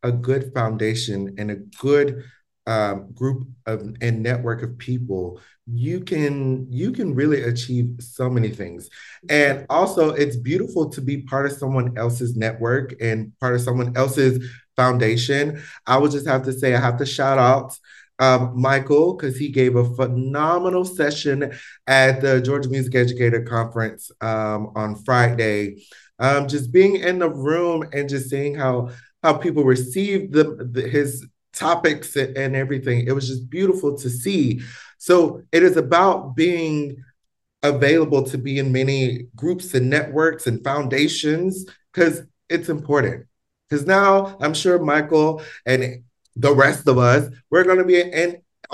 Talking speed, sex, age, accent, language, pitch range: 155 wpm, male, 30-49, American, English, 125-155 Hz